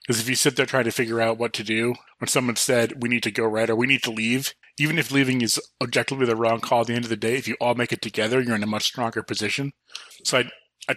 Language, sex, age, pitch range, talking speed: English, male, 20-39, 115-130 Hz, 295 wpm